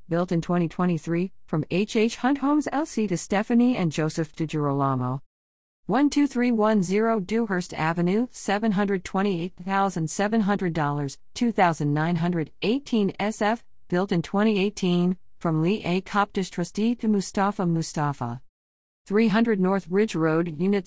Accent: American